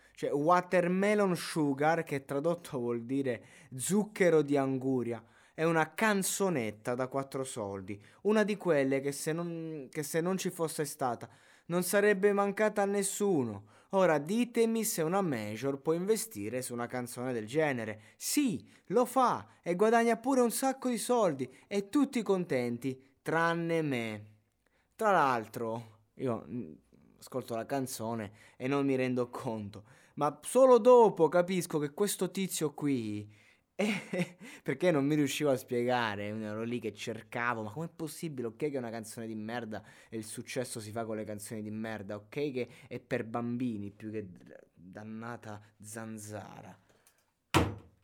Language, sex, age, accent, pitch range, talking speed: Italian, male, 20-39, native, 110-170 Hz, 145 wpm